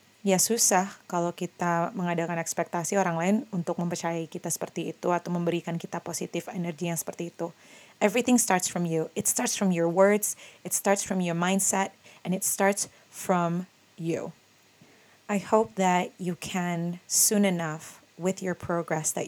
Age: 30-49